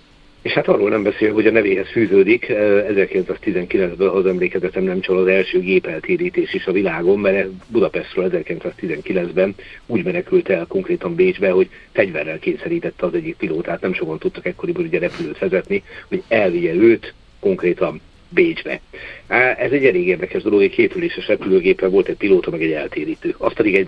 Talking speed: 155 wpm